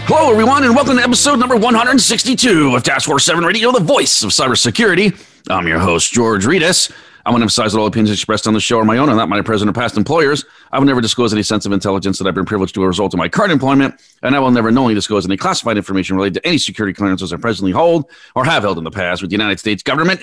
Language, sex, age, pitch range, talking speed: English, male, 40-59, 100-160 Hz, 265 wpm